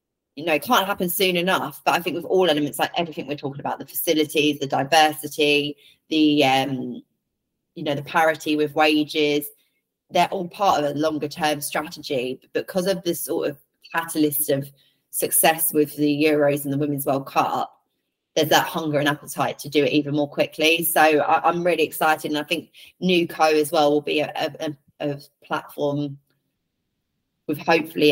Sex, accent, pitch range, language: female, British, 145-155 Hz, English